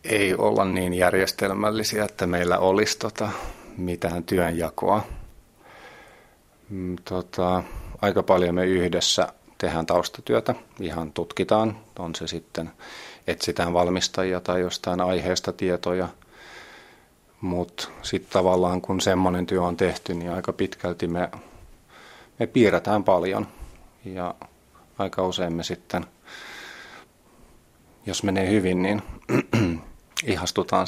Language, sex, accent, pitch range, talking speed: Finnish, male, native, 85-95 Hz, 100 wpm